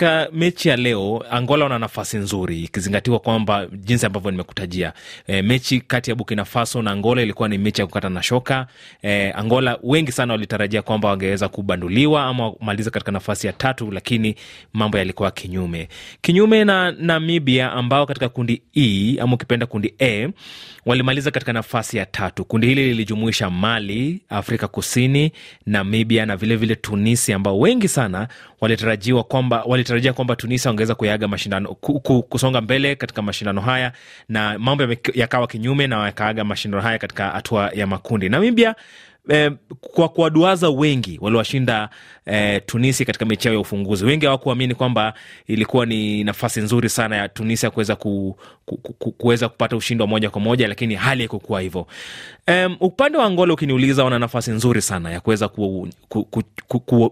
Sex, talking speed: male, 155 wpm